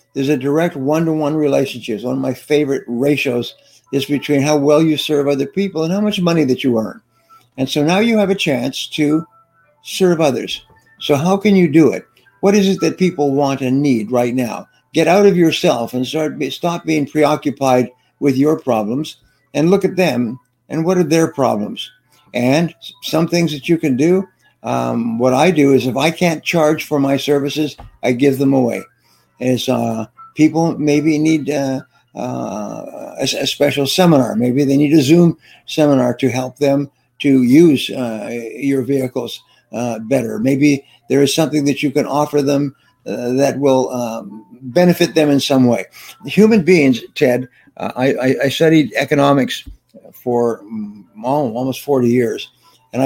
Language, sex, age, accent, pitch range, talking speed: English, male, 60-79, American, 125-160 Hz, 175 wpm